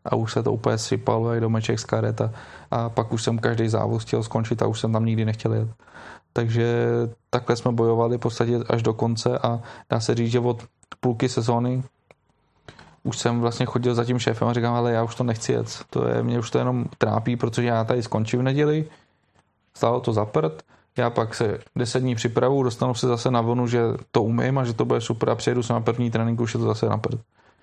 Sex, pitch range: male, 115-130 Hz